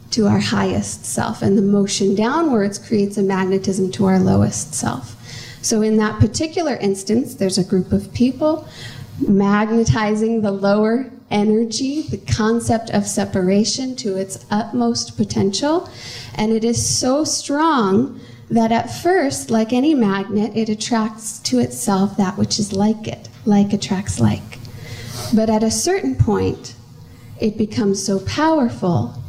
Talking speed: 140 wpm